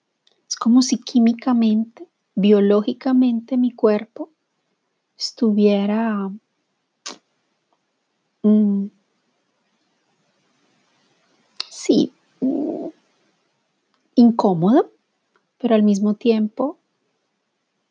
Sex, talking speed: female, 45 wpm